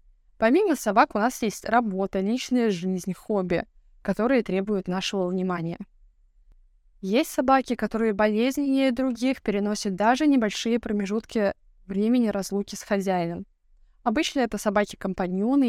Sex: female